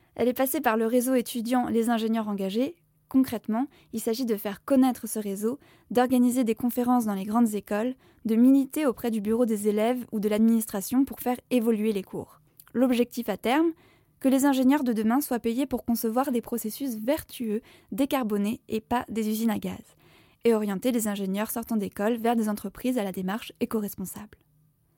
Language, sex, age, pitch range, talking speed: French, female, 20-39, 215-255 Hz, 180 wpm